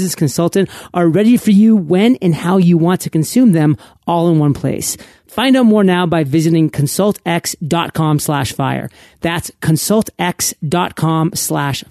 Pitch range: 160-200 Hz